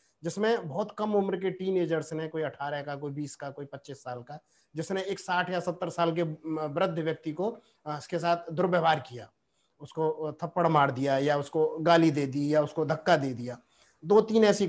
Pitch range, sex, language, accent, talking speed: 150-185 Hz, male, Hindi, native, 200 wpm